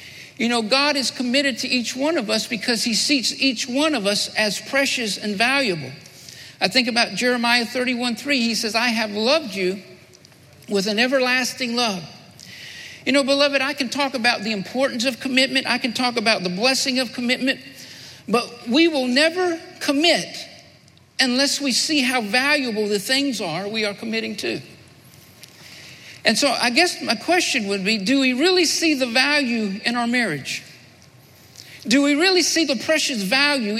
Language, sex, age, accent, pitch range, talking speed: English, male, 60-79, American, 220-280 Hz, 170 wpm